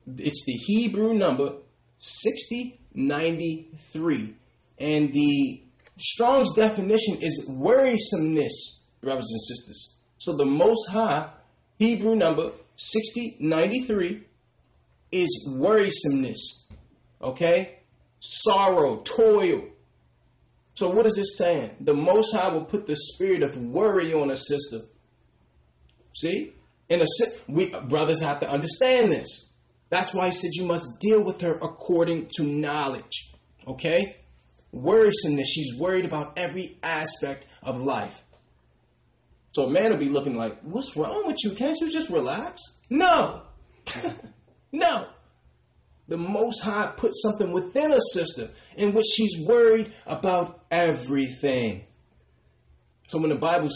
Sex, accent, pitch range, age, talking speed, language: male, American, 135-220 Hz, 30-49, 125 wpm, English